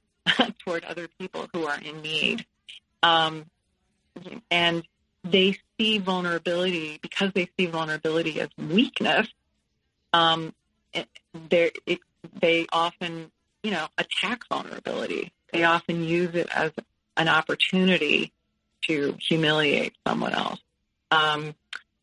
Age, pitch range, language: 40-59, 160-185 Hz, English